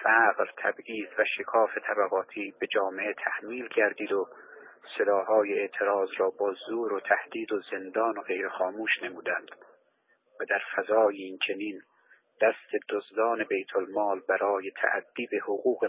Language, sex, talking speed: Persian, male, 130 wpm